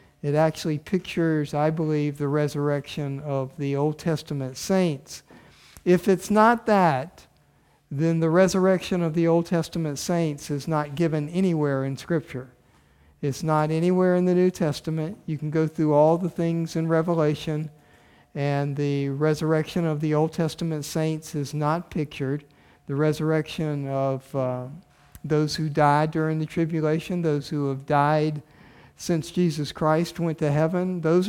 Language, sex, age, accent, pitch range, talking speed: English, male, 50-69, American, 145-170 Hz, 150 wpm